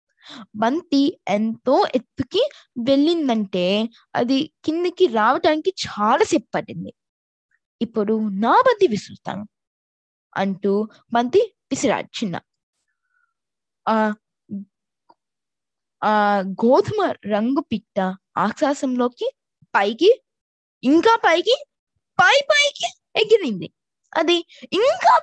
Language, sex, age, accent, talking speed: Telugu, female, 20-39, native, 70 wpm